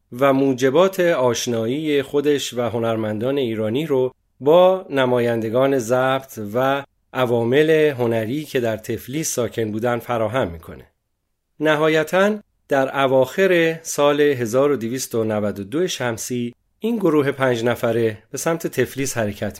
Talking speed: 105 wpm